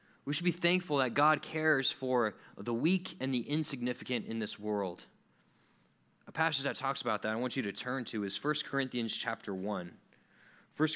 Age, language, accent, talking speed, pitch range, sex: 20-39, English, American, 185 wpm, 120-160 Hz, male